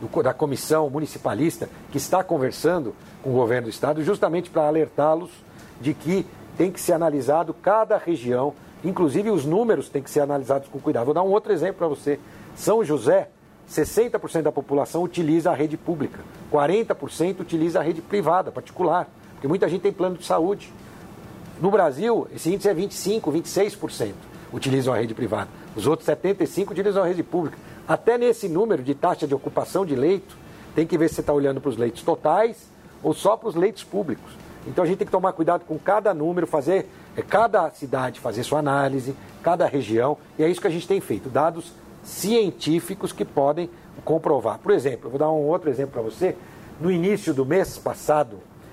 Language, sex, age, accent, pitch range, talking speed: Portuguese, male, 60-79, Brazilian, 140-180 Hz, 185 wpm